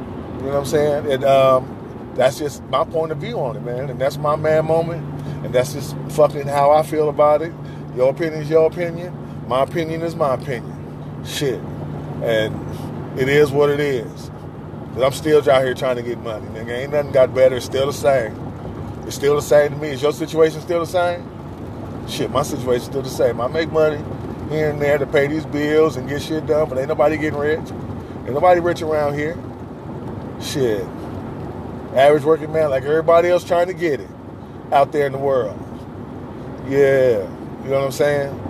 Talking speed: 200 wpm